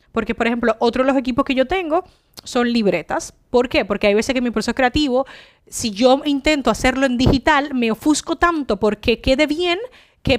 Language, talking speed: Spanish, 195 wpm